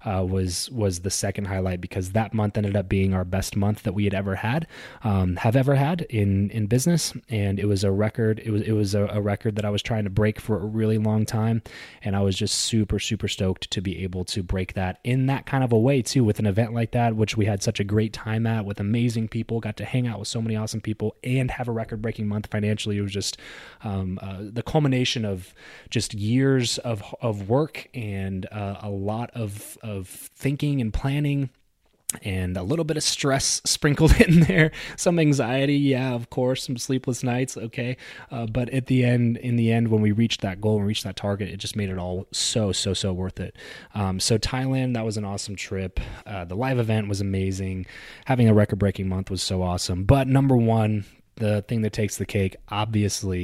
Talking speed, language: 225 wpm, English